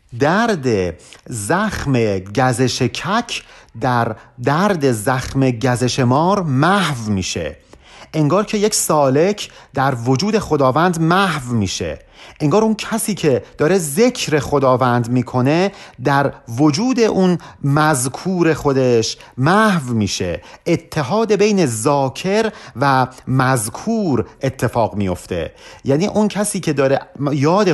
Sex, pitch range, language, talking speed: male, 125-200 Hz, Persian, 105 wpm